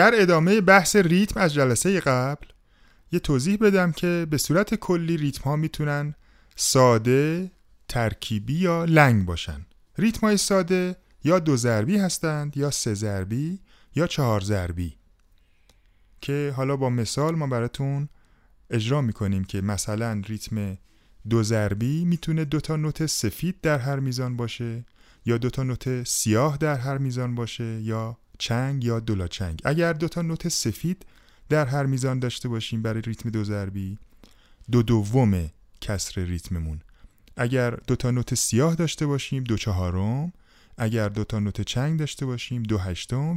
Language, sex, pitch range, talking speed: Persian, male, 105-150 Hz, 150 wpm